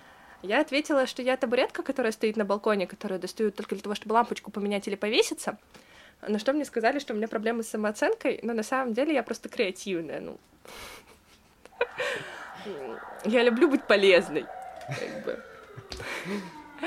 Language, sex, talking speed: Russian, female, 140 wpm